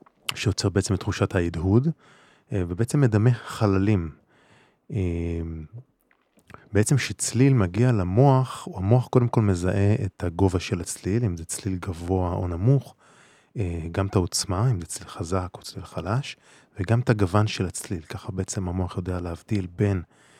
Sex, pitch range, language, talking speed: male, 95-120 Hz, Hebrew, 140 wpm